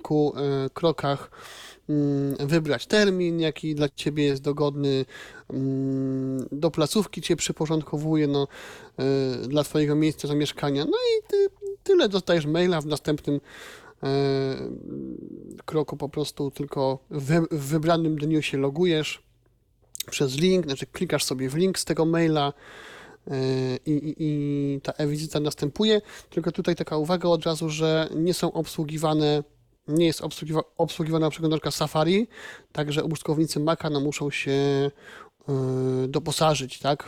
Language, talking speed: Polish, 120 wpm